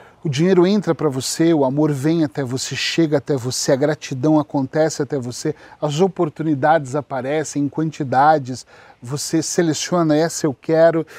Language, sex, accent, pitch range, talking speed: Portuguese, male, Brazilian, 140-165 Hz, 150 wpm